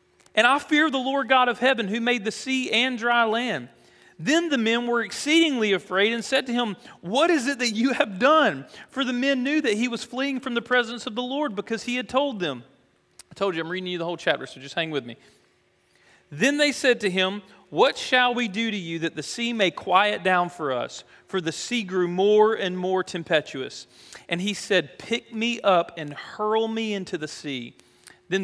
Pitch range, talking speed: 140-225 Hz, 220 wpm